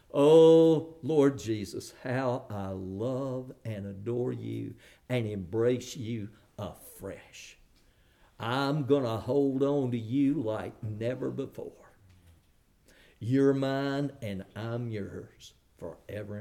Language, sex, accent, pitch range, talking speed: English, male, American, 110-170 Hz, 105 wpm